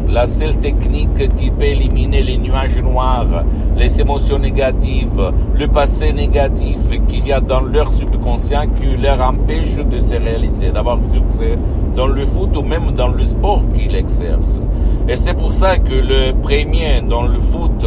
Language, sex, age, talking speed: Italian, male, 60-79, 165 wpm